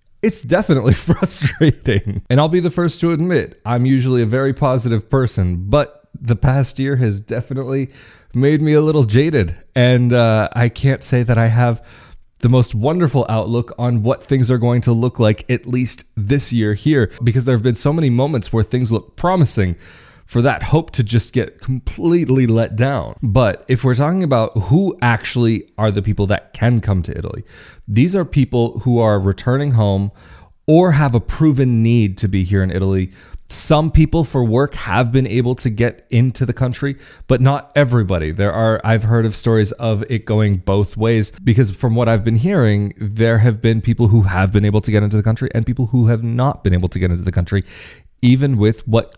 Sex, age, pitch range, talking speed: male, 20-39, 105-135 Hz, 200 wpm